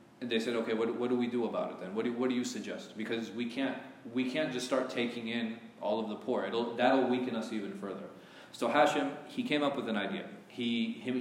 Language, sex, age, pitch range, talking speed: English, male, 30-49, 110-130 Hz, 245 wpm